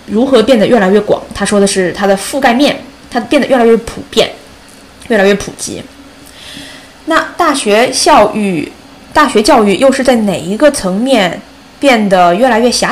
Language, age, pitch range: Chinese, 20-39, 195-270 Hz